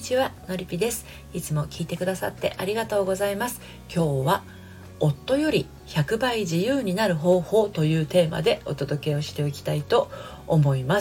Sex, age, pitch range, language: female, 40-59, 140-180 Hz, Japanese